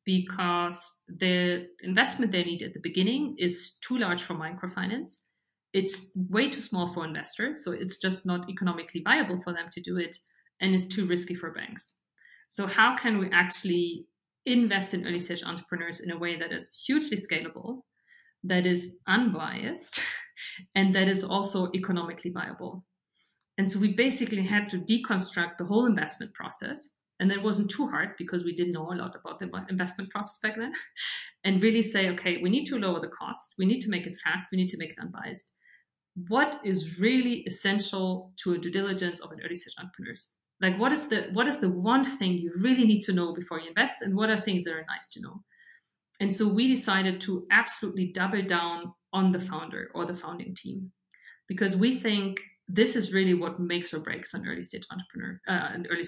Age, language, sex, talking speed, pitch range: 50-69, English, female, 195 wpm, 175-210 Hz